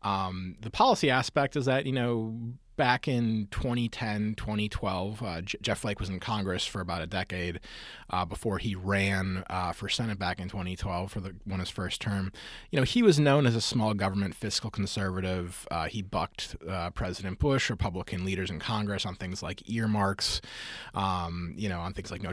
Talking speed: 190 wpm